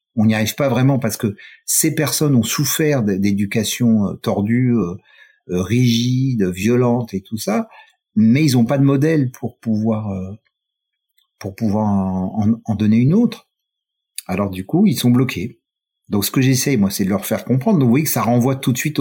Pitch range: 110-155 Hz